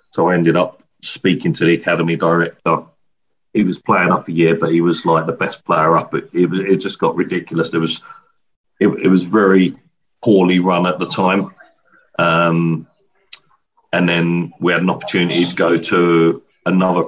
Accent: British